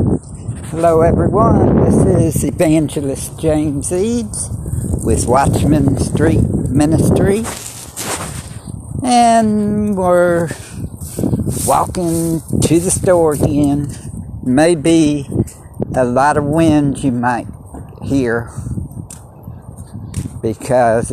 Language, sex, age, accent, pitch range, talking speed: English, male, 60-79, American, 105-135 Hz, 75 wpm